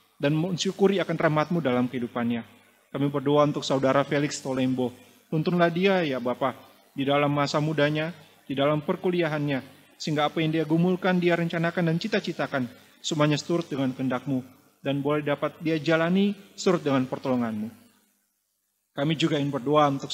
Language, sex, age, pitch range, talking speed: Indonesian, male, 30-49, 135-170 Hz, 145 wpm